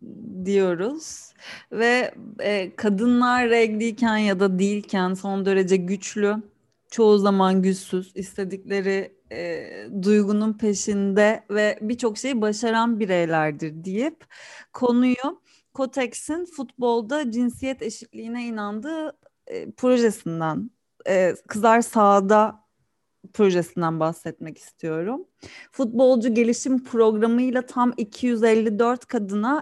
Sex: female